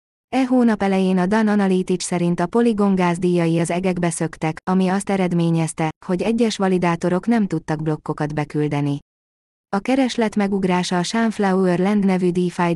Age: 20-39